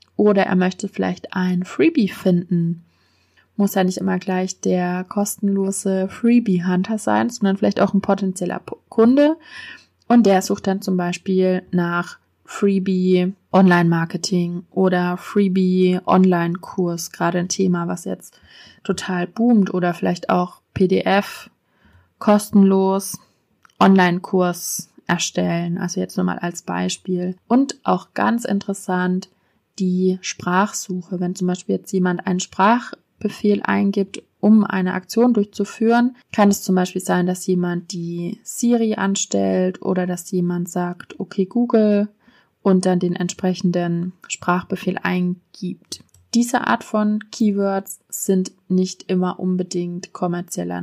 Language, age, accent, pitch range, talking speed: German, 20-39, German, 180-200 Hz, 115 wpm